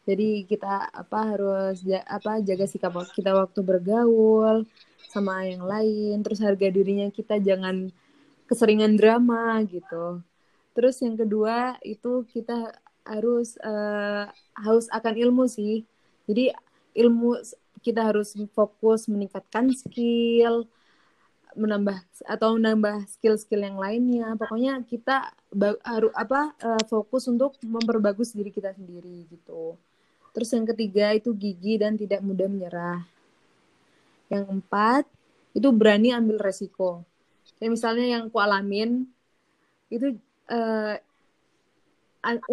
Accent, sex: native, female